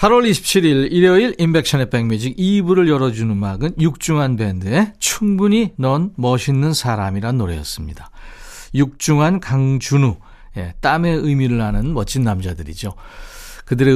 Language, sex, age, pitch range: Korean, male, 40-59, 125-175 Hz